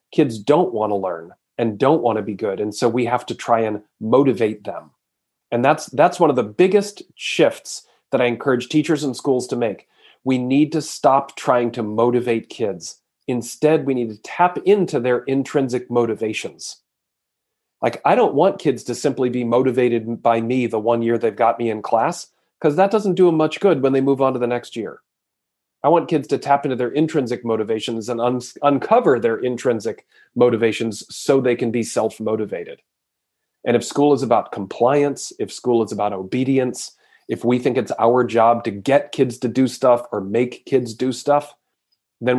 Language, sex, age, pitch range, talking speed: English, male, 30-49, 115-135 Hz, 195 wpm